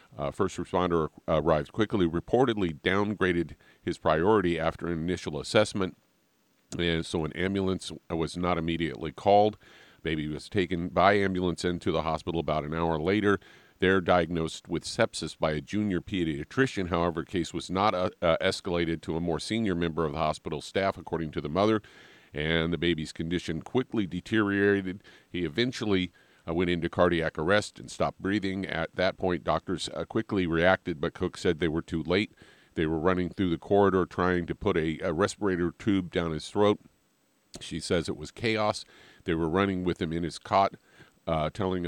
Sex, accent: male, American